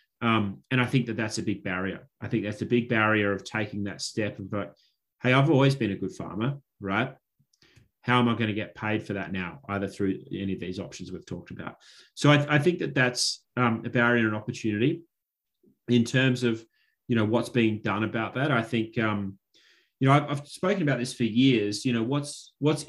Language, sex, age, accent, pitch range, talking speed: English, male, 30-49, Australian, 100-125 Hz, 225 wpm